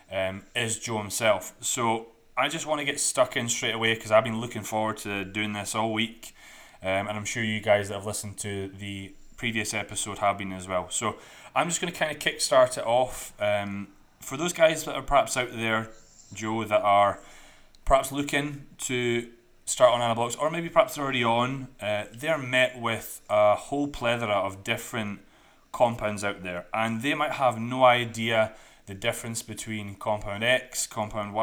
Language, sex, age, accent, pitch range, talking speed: English, male, 20-39, British, 105-130 Hz, 185 wpm